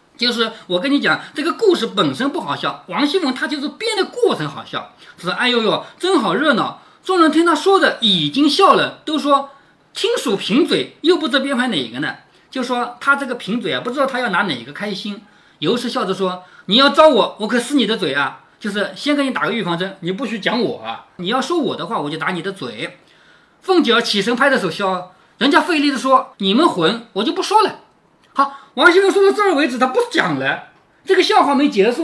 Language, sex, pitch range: Chinese, male, 210-335 Hz